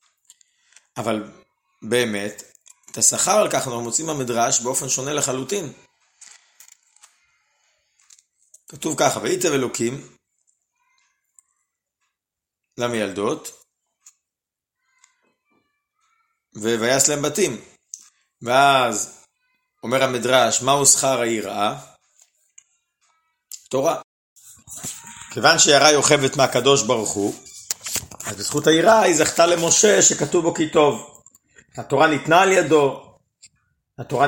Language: Hebrew